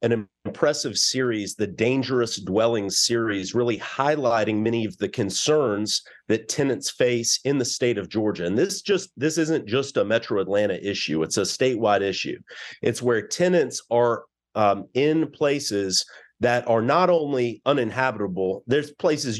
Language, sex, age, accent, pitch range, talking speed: English, male, 40-59, American, 105-130 Hz, 150 wpm